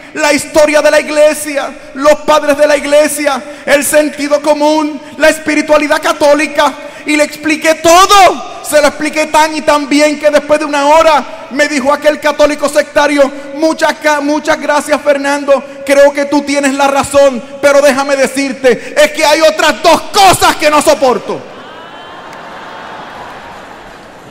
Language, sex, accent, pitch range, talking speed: Spanish, male, Venezuelan, 200-300 Hz, 145 wpm